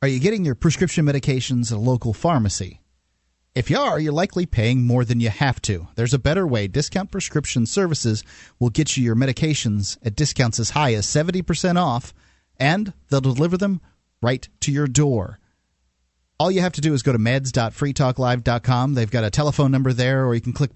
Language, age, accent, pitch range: English, 40-59, American, 115-140 Hz